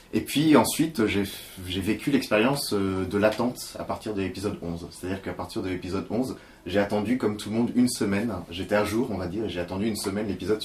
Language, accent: French, French